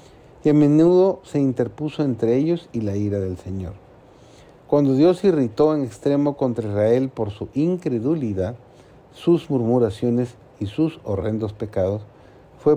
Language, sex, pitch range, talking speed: Spanish, male, 110-150 Hz, 135 wpm